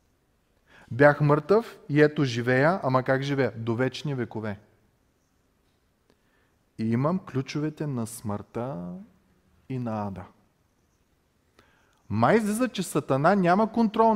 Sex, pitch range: male, 120-165 Hz